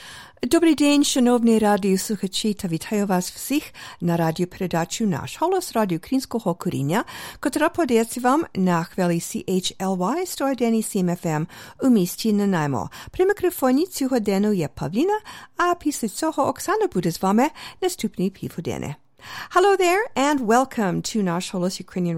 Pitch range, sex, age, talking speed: 180-260 Hz, female, 50-69, 135 wpm